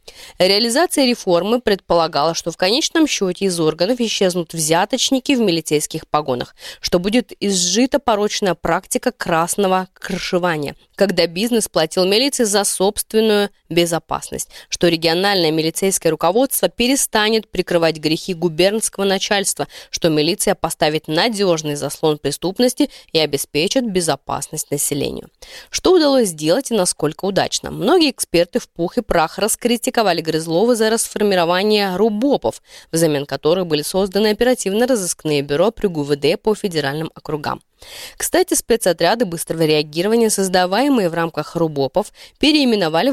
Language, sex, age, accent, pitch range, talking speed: Russian, female, 20-39, native, 160-235 Hz, 120 wpm